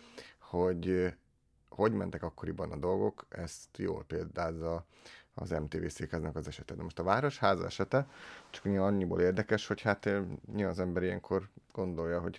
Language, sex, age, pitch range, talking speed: Hungarian, male, 30-49, 85-100 Hz, 140 wpm